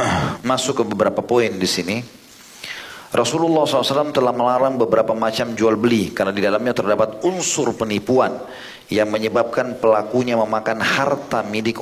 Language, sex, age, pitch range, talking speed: Indonesian, male, 40-59, 105-125 Hz, 130 wpm